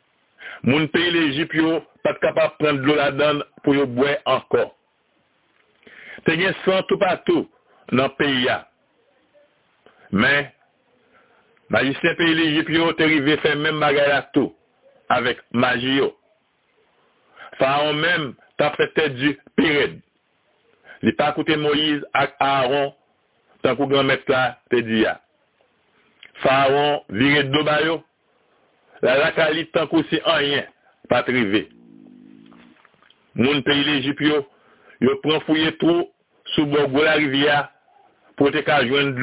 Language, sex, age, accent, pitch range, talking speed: French, male, 60-79, French, 140-155 Hz, 125 wpm